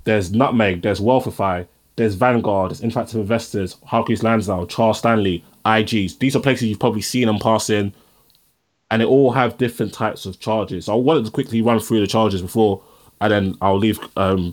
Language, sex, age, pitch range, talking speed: English, male, 20-39, 100-120 Hz, 190 wpm